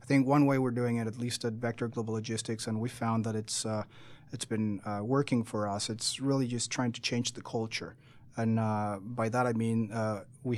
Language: English